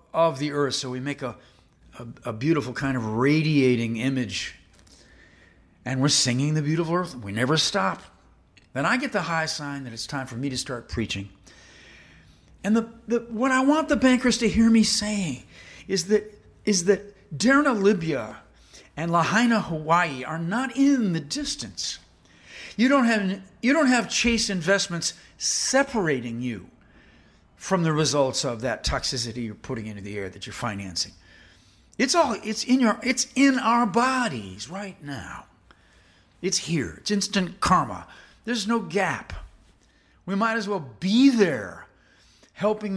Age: 50-69